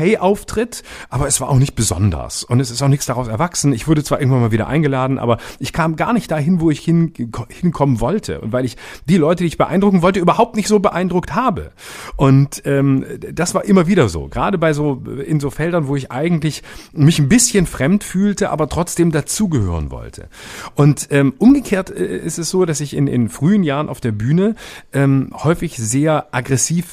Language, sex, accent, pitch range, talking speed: German, male, German, 120-165 Hz, 200 wpm